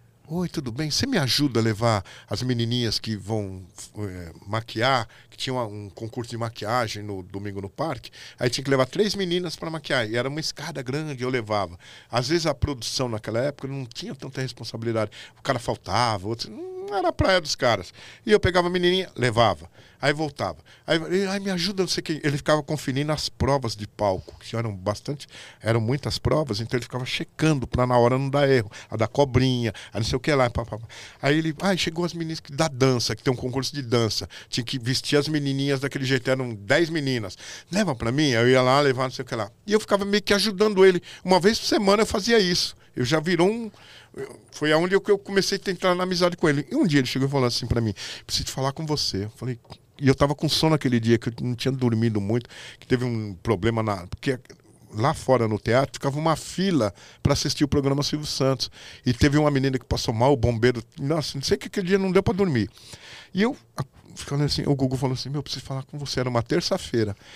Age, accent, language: 50-69, Brazilian, Portuguese